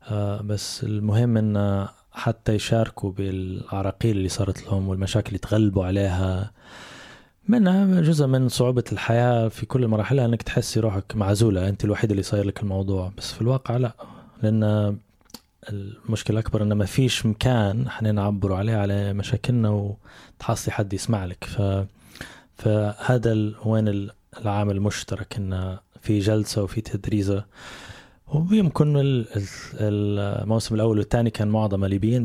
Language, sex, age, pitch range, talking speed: Arabic, male, 20-39, 100-115 Hz, 125 wpm